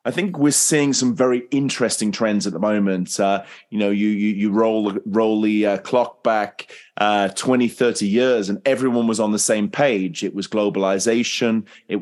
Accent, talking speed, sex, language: British, 190 wpm, male, English